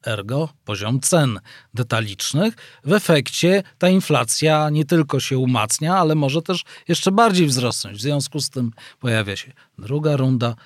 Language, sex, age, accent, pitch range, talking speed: Polish, male, 40-59, native, 115-155 Hz, 145 wpm